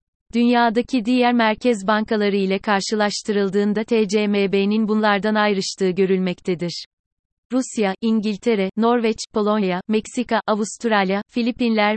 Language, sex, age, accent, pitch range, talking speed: Turkish, female, 30-49, native, 195-225 Hz, 85 wpm